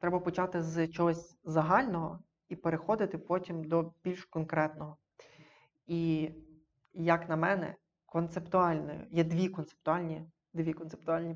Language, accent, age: Ukrainian, native, 20-39